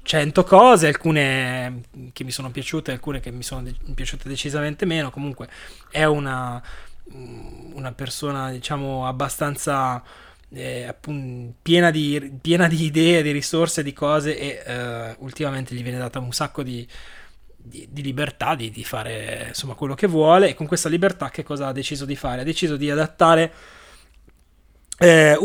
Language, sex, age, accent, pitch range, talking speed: Italian, male, 20-39, native, 125-155 Hz, 150 wpm